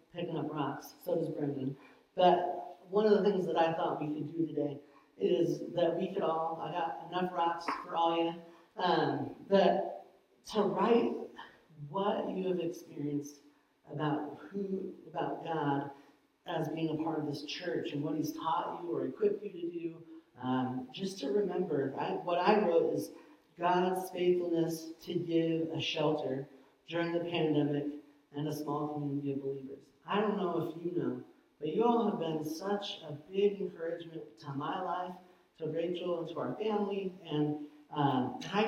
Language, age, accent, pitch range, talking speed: English, 40-59, American, 150-180 Hz, 170 wpm